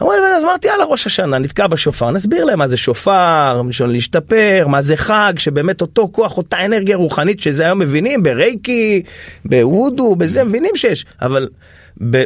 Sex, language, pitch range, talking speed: male, Hebrew, 130-215 Hz, 160 wpm